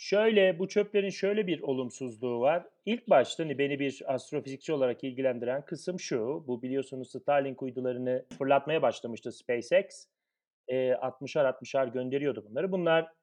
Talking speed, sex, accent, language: 125 wpm, male, native, Turkish